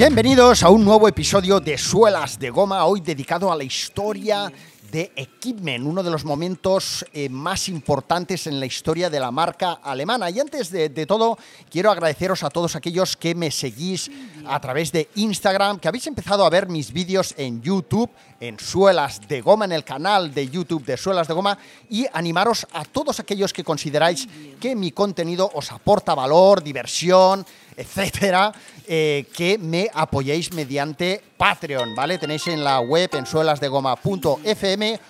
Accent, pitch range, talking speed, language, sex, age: Spanish, 145-195 Hz, 160 wpm, Spanish, male, 40-59